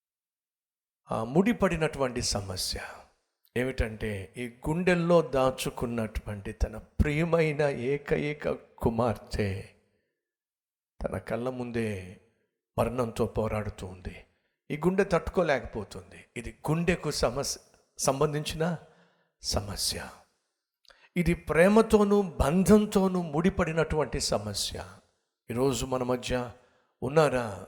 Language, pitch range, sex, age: Telugu, 120-190 Hz, male, 60-79